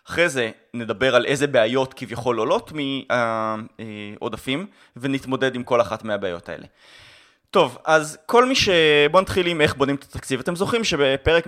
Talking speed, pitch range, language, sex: 155 wpm, 120-175 Hz, Hebrew, male